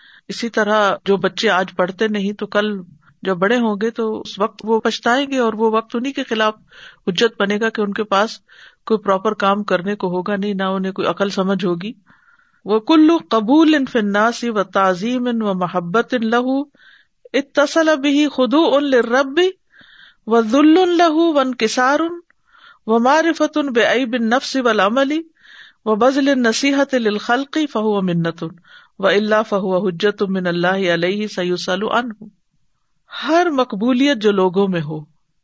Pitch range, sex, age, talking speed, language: 190-275 Hz, female, 50-69, 140 wpm, Urdu